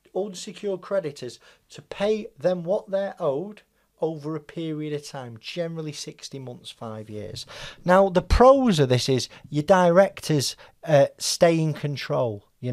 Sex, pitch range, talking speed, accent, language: male, 125-190 Hz, 145 wpm, British, English